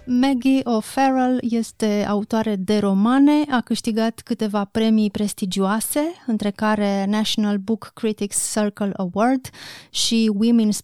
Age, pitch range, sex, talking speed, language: 30-49, 205-245 Hz, female, 110 wpm, Romanian